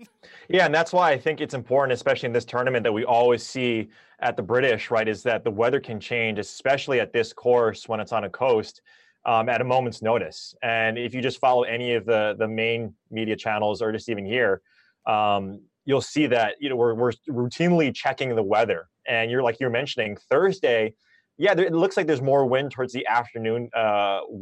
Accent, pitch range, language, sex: American, 110-145 Hz, English, male